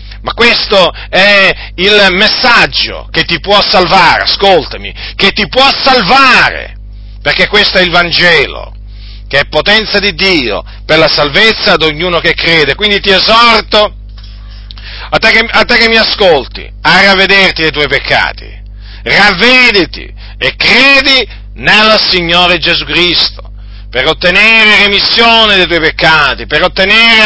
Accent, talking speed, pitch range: native, 130 wpm, 140-210 Hz